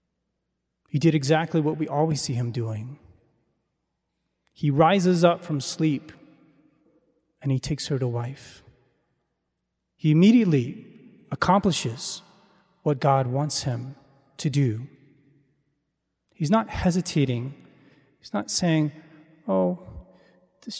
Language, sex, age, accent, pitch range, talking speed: English, male, 30-49, American, 140-175 Hz, 105 wpm